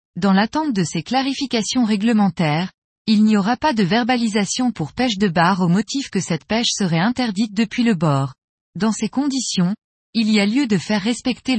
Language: French